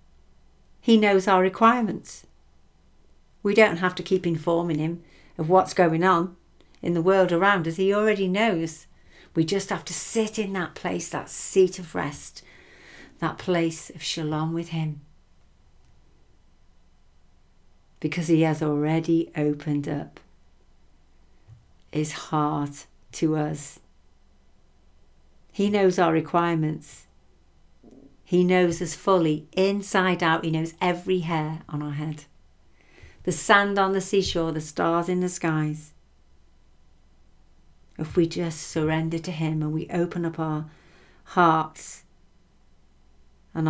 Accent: British